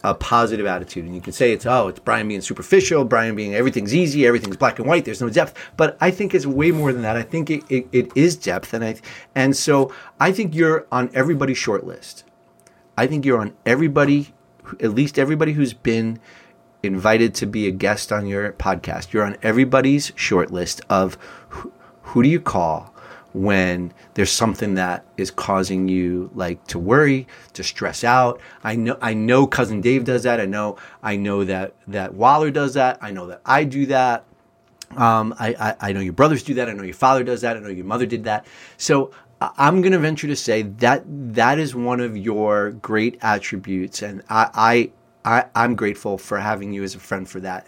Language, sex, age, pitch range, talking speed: English, male, 30-49, 100-135 Hz, 205 wpm